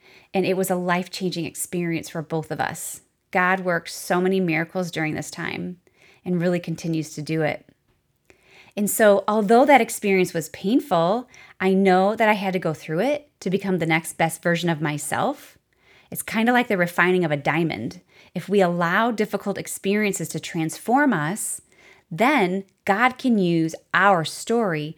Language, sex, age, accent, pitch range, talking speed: English, female, 30-49, American, 170-210 Hz, 170 wpm